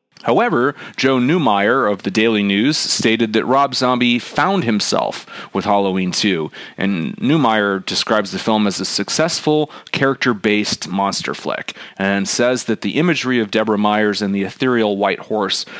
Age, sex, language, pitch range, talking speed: 30-49, male, English, 100-120 Hz, 150 wpm